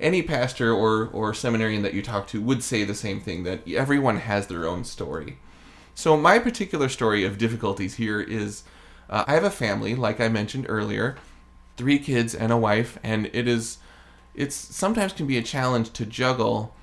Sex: male